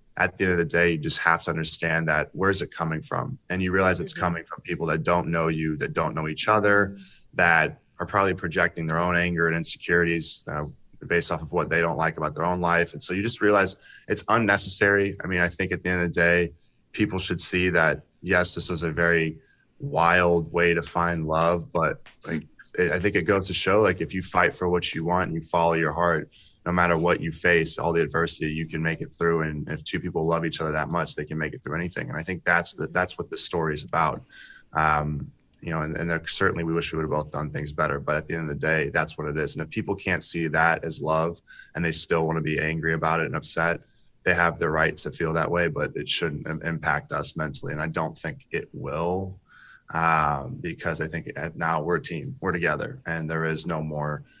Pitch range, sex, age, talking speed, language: 80-90 Hz, male, 20-39, 250 wpm, English